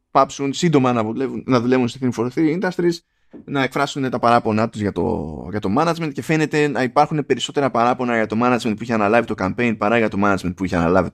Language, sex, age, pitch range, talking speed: Greek, male, 20-39, 110-145 Hz, 205 wpm